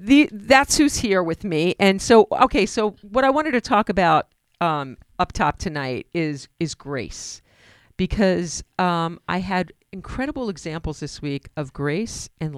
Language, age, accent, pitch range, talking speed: English, 50-69, American, 145-195 Hz, 160 wpm